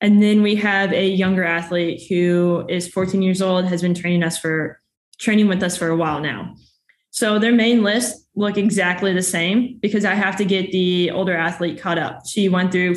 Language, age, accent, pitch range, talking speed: English, 20-39, American, 175-205 Hz, 210 wpm